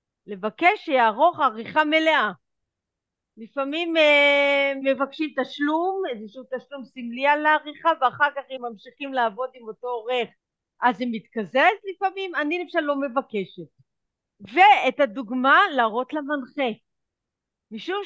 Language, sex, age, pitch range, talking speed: Hebrew, female, 50-69, 245-335 Hz, 115 wpm